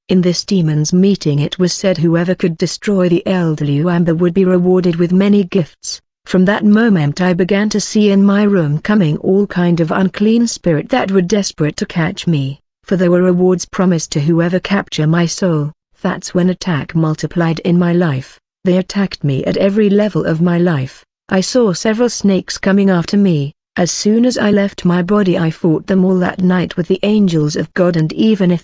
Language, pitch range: Japanese, 165-195 Hz